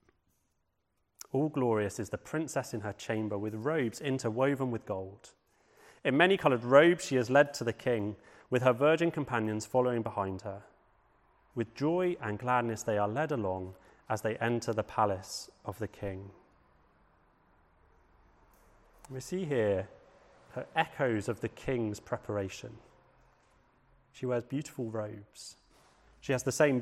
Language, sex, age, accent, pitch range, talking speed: English, male, 30-49, British, 105-135 Hz, 140 wpm